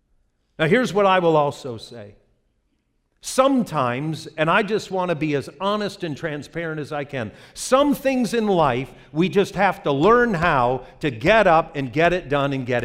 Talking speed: 185 wpm